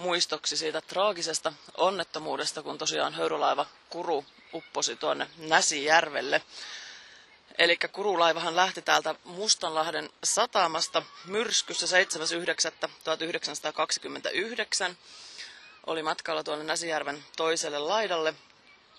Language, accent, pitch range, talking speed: Finnish, native, 155-180 Hz, 80 wpm